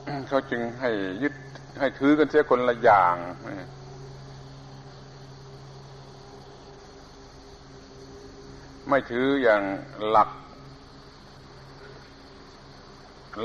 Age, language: 70-89, Thai